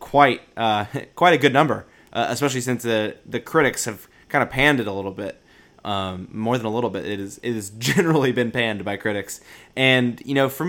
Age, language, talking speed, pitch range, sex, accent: 20-39, English, 225 wpm, 105-130 Hz, male, American